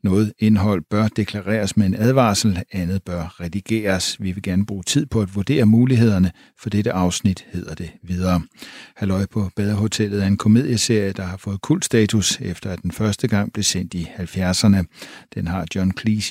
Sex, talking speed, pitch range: male, 180 wpm, 95-115 Hz